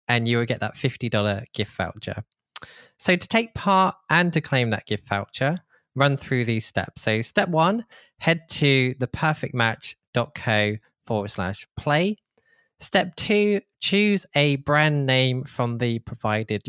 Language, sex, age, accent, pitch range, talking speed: English, male, 20-39, British, 120-160 Hz, 145 wpm